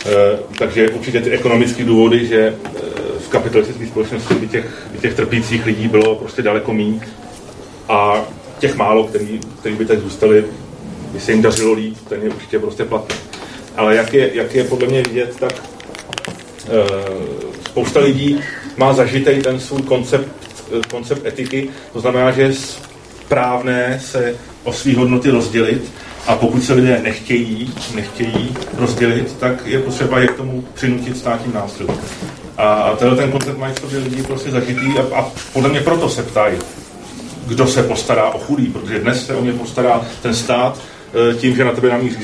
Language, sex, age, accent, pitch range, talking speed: Czech, male, 30-49, native, 115-130 Hz, 175 wpm